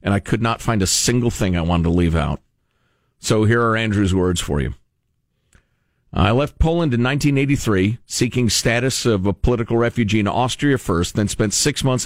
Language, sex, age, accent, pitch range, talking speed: English, male, 50-69, American, 100-140 Hz, 190 wpm